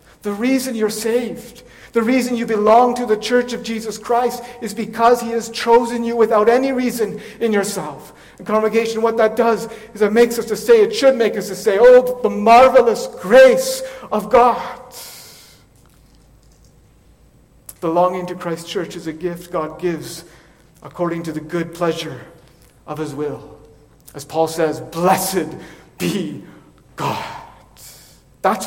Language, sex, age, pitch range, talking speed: English, male, 50-69, 165-240 Hz, 150 wpm